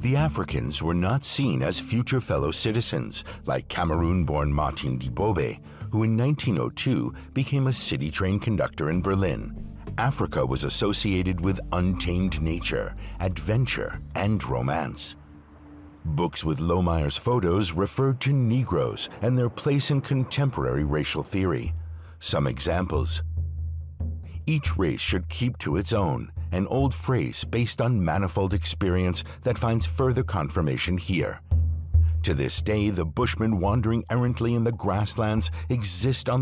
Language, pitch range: English, 80-115 Hz